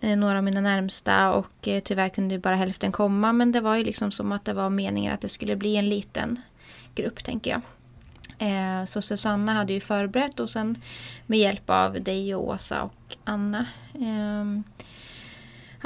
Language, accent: Swedish, native